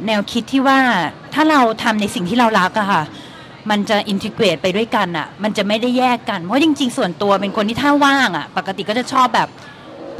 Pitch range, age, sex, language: 195-240 Hz, 20-39, female, Thai